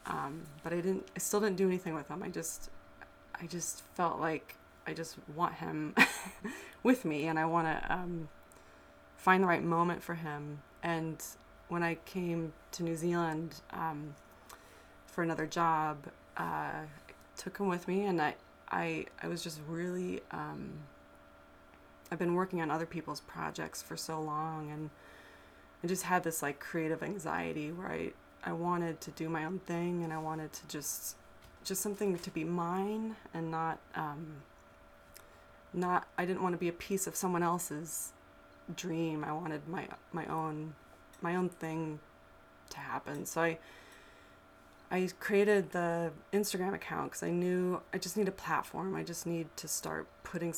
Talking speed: 170 wpm